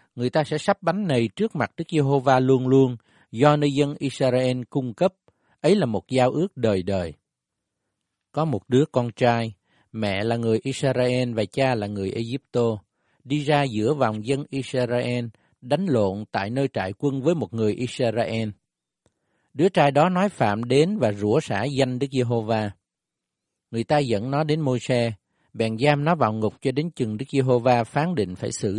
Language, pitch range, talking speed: Vietnamese, 110-145 Hz, 185 wpm